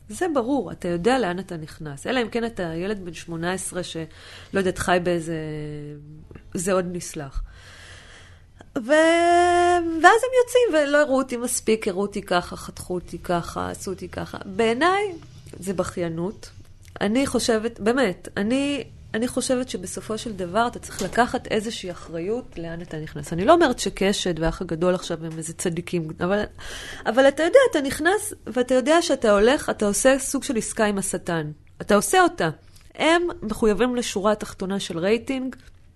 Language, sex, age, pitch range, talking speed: Hebrew, female, 20-39, 175-240 Hz, 155 wpm